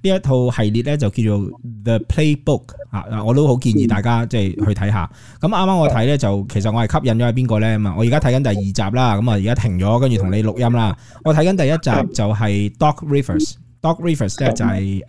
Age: 20-39